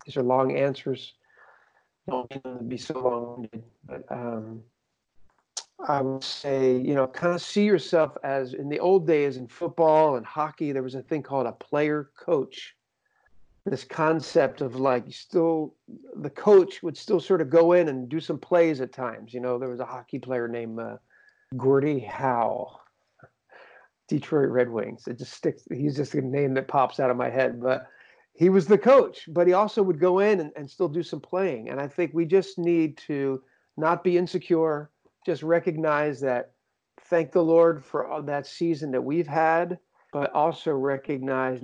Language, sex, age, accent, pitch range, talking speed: English, male, 50-69, American, 130-165 Hz, 180 wpm